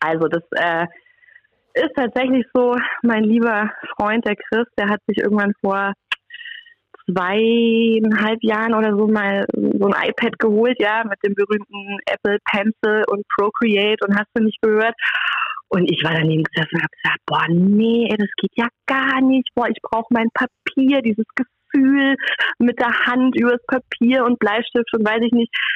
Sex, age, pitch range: female, 30-49, 180-240 Hz